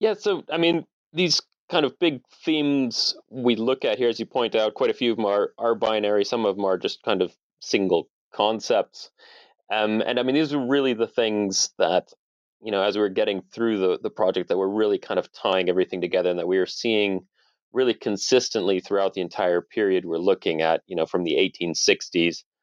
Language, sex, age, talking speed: English, male, 30-49, 210 wpm